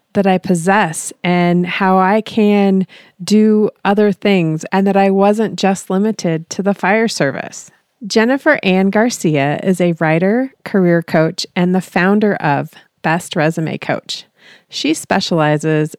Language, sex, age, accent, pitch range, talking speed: English, female, 30-49, American, 170-220 Hz, 140 wpm